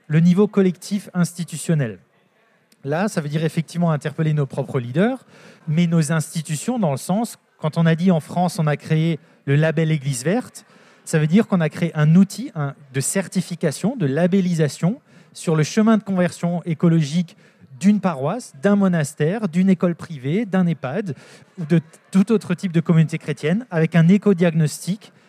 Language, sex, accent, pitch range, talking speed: French, male, French, 160-195 Hz, 165 wpm